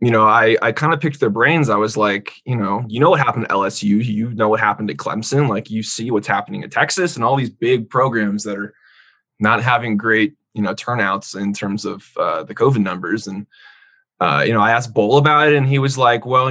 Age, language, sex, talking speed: 20-39, English, male, 245 wpm